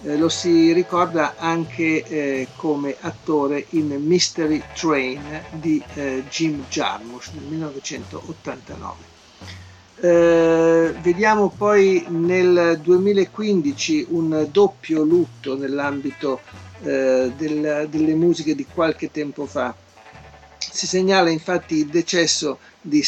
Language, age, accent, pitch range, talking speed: Italian, 50-69, native, 140-170 Hz, 100 wpm